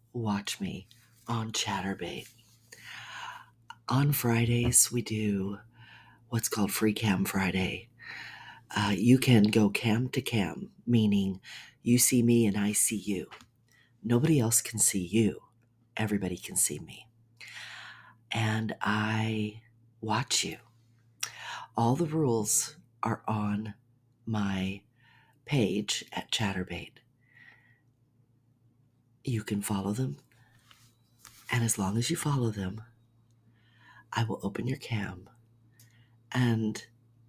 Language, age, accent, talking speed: English, 50-69, American, 110 wpm